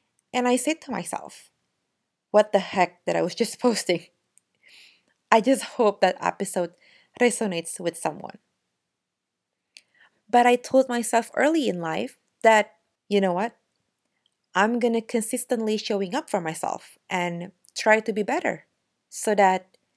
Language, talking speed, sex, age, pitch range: Indonesian, 140 wpm, female, 30-49, 185-235 Hz